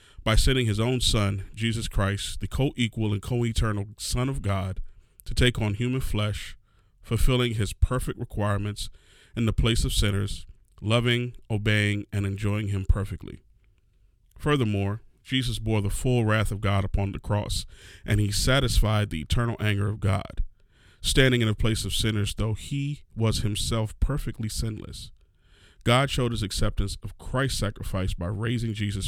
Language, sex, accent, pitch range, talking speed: English, male, American, 100-115 Hz, 155 wpm